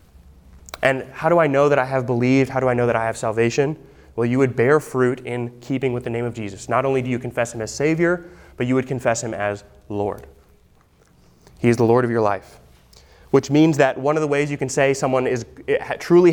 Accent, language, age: American, English, 20-39